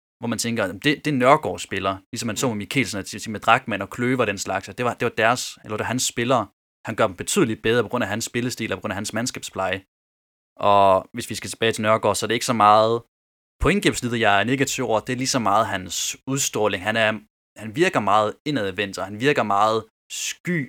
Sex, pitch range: male, 100-120 Hz